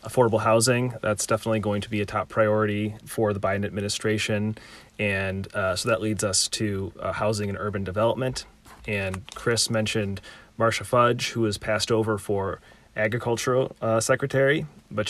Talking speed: 155 wpm